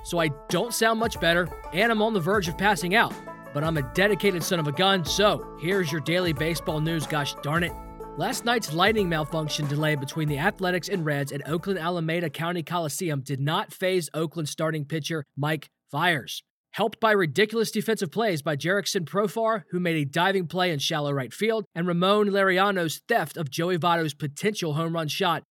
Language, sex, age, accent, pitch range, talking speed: English, male, 20-39, American, 155-205 Hz, 195 wpm